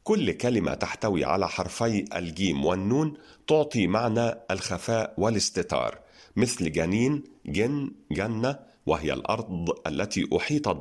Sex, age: male, 50-69